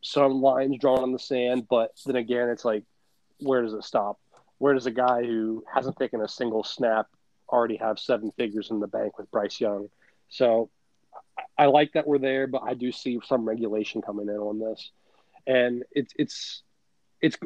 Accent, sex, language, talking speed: American, male, English, 190 wpm